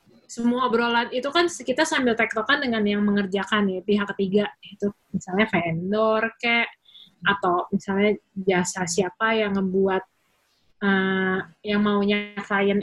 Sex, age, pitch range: female, 20-39, 200-240 Hz